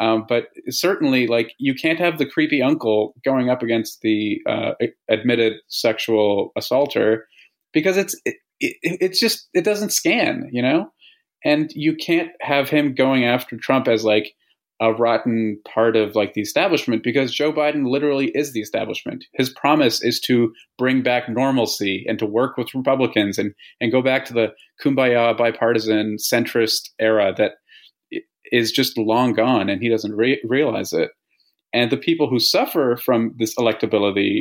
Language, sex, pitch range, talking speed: English, male, 110-150 Hz, 160 wpm